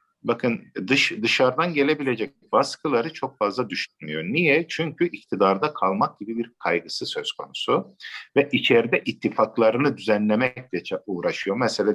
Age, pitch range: 50-69, 105-145 Hz